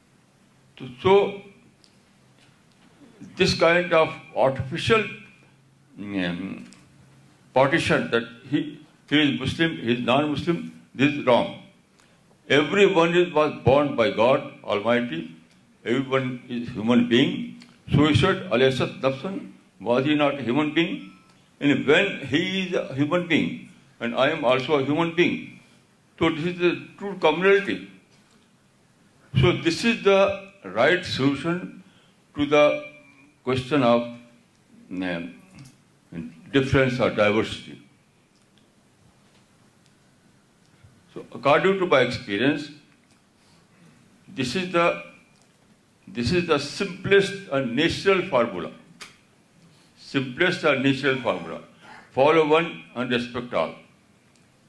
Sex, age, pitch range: male, 60-79, 125-175 Hz